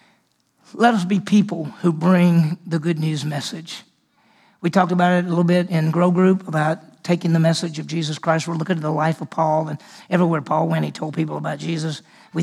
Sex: male